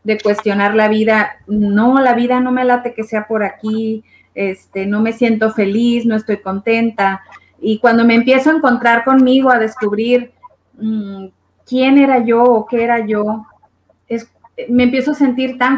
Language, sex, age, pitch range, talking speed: Spanish, female, 30-49, 210-250 Hz, 170 wpm